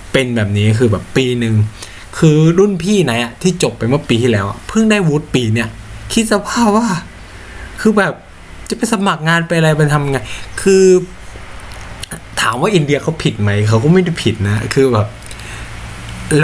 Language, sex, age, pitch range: Thai, male, 20-39, 110-155 Hz